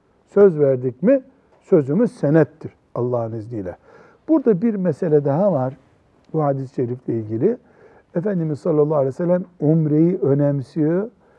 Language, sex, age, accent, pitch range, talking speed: Turkish, male, 60-79, native, 125-160 Hz, 120 wpm